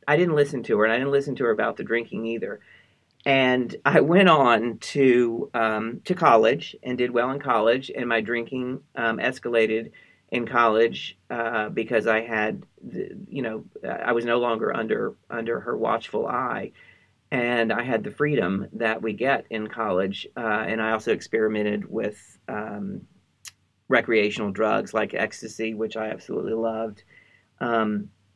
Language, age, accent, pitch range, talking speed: English, 40-59, American, 110-135 Hz, 165 wpm